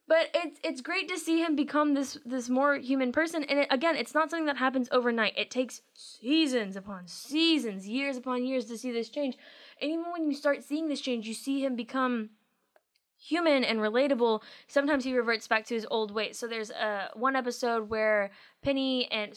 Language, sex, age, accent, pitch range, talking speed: English, female, 10-29, American, 220-285 Hz, 200 wpm